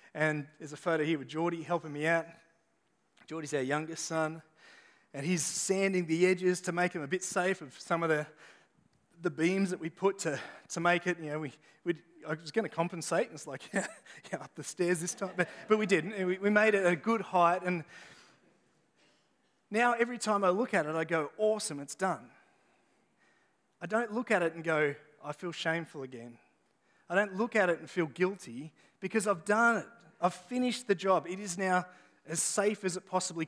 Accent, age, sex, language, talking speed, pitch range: Australian, 30-49, male, English, 205 wpm, 160-195 Hz